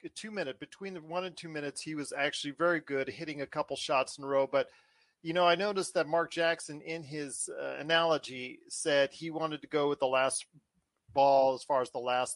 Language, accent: English, American